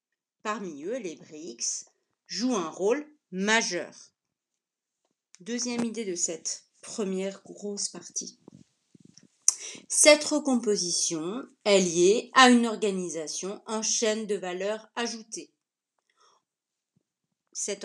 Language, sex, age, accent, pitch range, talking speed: French, female, 40-59, French, 175-240 Hz, 95 wpm